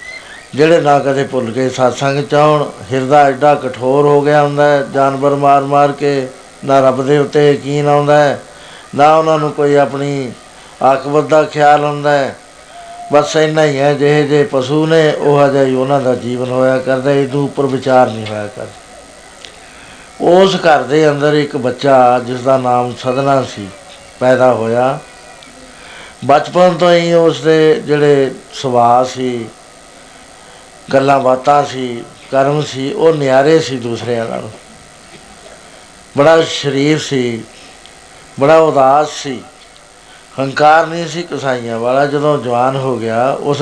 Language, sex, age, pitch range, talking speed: Punjabi, male, 60-79, 130-150 Hz, 140 wpm